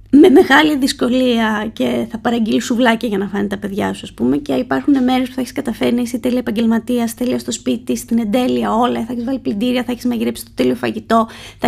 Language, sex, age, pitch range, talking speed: Greek, female, 20-39, 190-250 Hz, 220 wpm